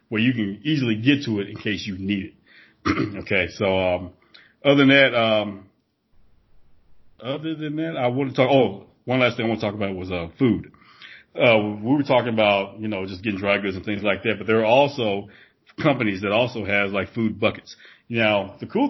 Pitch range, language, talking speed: 95-110 Hz, English, 215 wpm